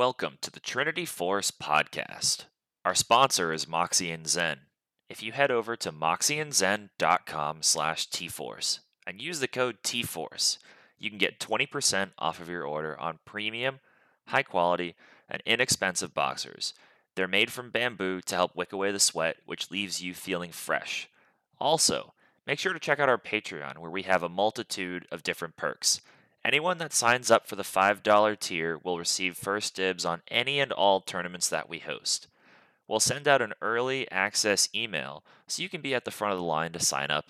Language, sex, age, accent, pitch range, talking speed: English, male, 20-39, American, 85-115 Hz, 175 wpm